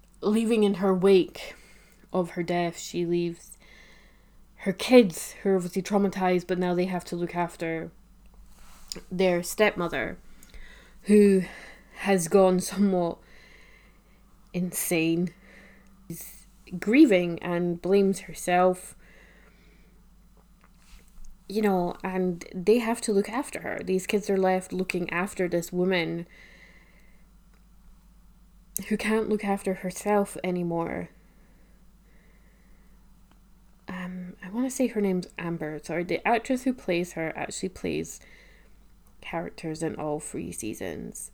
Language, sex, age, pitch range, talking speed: English, female, 20-39, 180-205 Hz, 115 wpm